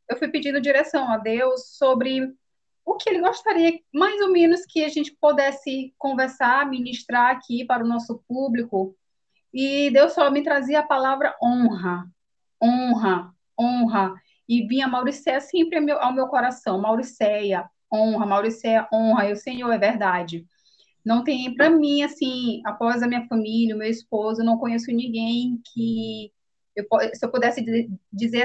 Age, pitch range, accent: 20-39, 220-270 Hz, Brazilian